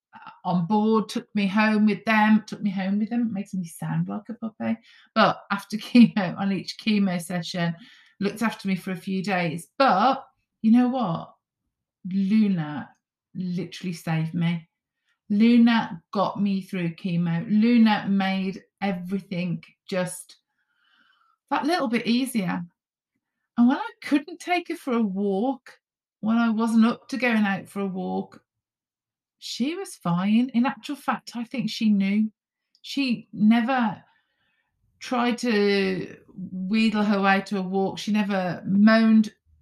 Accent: British